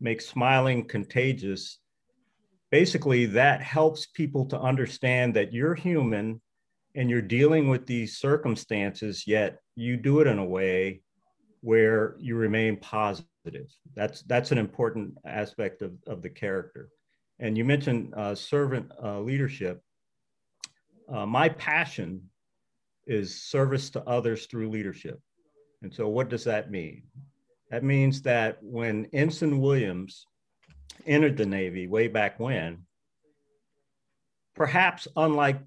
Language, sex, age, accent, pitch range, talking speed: English, male, 50-69, American, 110-145 Hz, 125 wpm